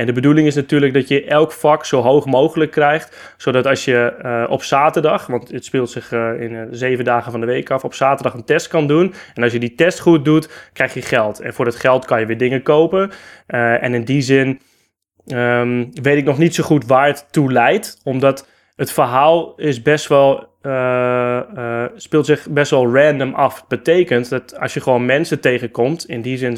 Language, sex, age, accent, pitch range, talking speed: Dutch, male, 20-39, Dutch, 125-145 Hz, 220 wpm